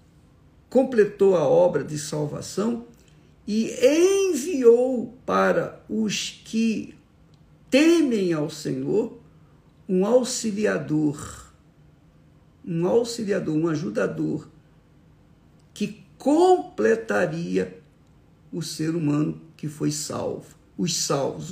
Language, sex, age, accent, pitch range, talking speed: Portuguese, male, 60-79, Brazilian, 155-230 Hz, 80 wpm